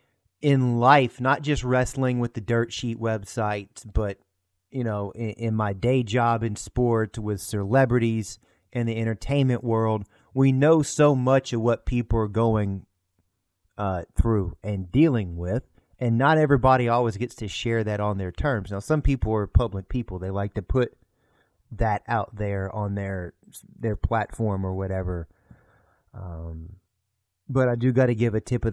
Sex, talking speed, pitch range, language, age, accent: male, 165 wpm, 100-120 Hz, English, 30-49, American